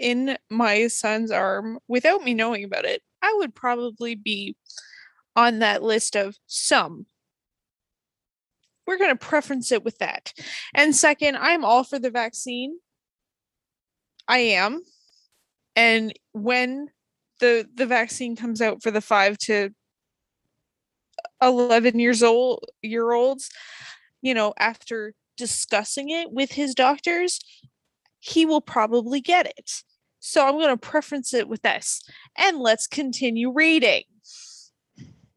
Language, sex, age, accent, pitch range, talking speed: English, female, 20-39, American, 230-305 Hz, 125 wpm